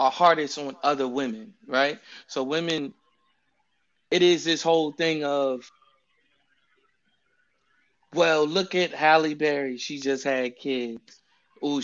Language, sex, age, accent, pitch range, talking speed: English, male, 20-39, American, 130-145 Hz, 120 wpm